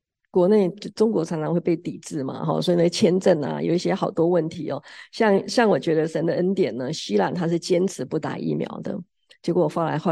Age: 50-69